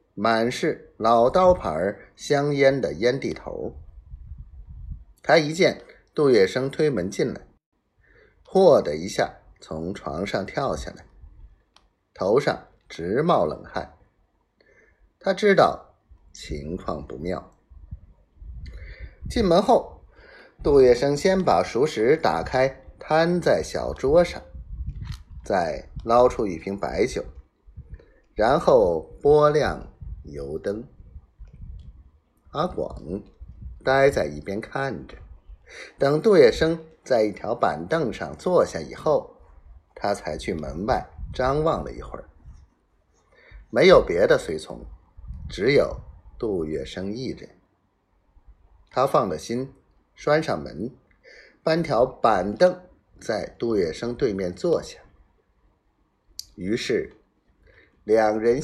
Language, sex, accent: Chinese, male, native